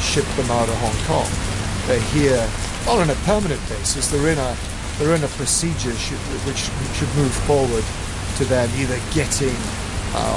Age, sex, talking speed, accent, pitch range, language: 50-69, male, 170 wpm, British, 100-125 Hz, English